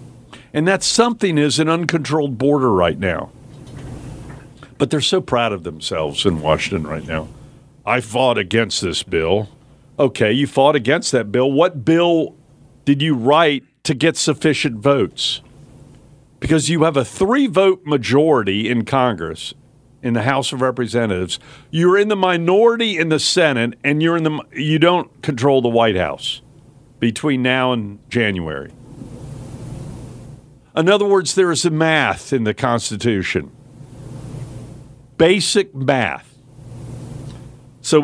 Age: 50-69